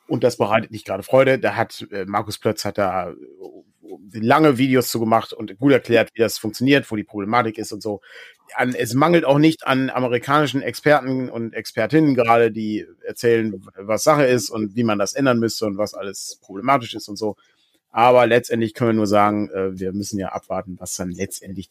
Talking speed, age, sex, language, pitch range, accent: 195 wpm, 30-49, male, German, 105-145 Hz, German